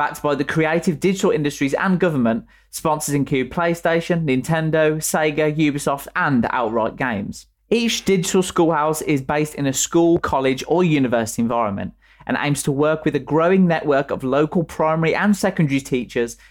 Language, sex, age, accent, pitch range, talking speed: English, male, 20-39, British, 125-165 Hz, 155 wpm